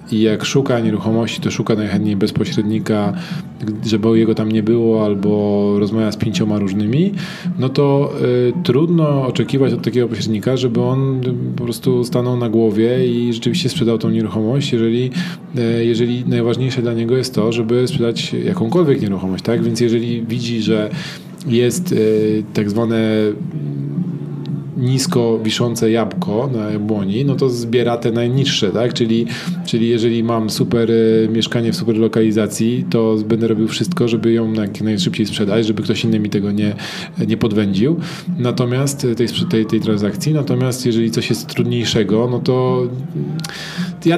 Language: Polish